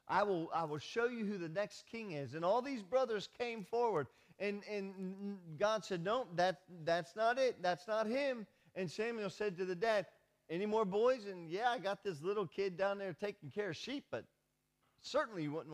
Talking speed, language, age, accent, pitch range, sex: 210 wpm, English, 40-59, American, 155-205 Hz, male